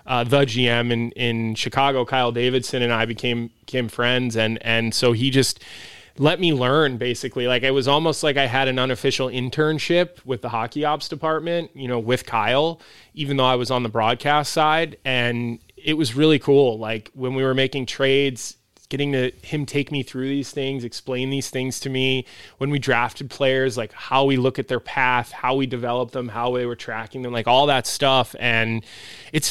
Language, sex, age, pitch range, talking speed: English, male, 20-39, 120-135 Hz, 200 wpm